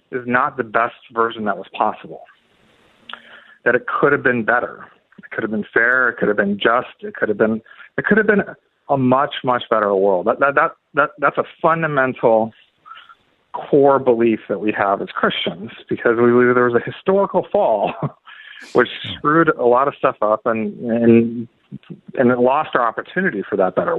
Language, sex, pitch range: English, male, 115-165 Hz